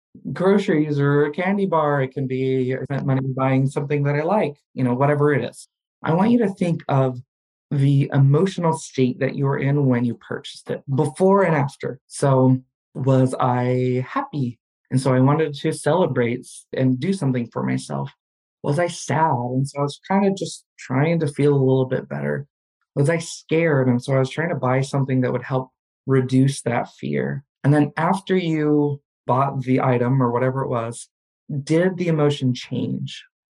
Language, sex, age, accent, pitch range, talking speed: English, male, 20-39, American, 130-155 Hz, 190 wpm